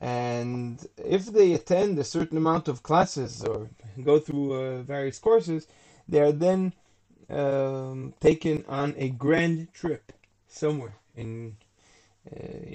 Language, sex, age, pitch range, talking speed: English, male, 20-39, 115-140 Hz, 125 wpm